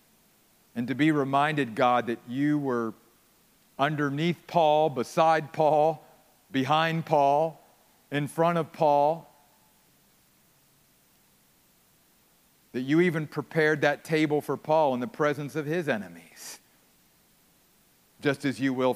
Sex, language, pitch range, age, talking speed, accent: male, English, 125-155 Hz, 50-69, 115 wpm, American